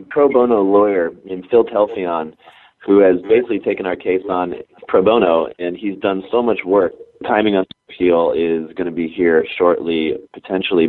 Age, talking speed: 30-49, 175 wpm